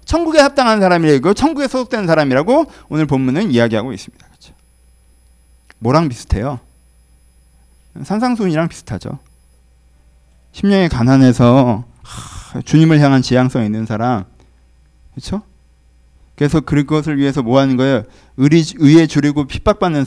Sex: male